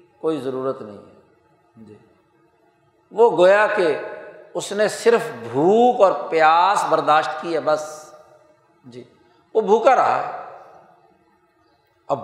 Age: 60-79